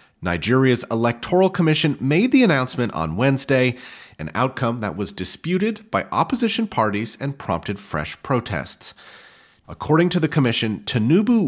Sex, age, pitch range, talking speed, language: male, 30-49, 105-165 Hz, 130 wpm, English